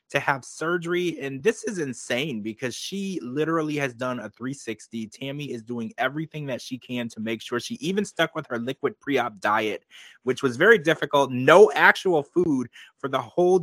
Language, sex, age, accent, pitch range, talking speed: English, male, 20-39, American, 120-160 Hz, 185 wpm